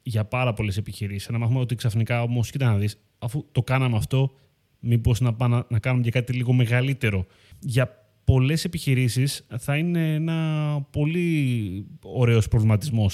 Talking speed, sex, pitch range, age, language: 155 wpm, male, 105-150 Hz, 30-49, Greek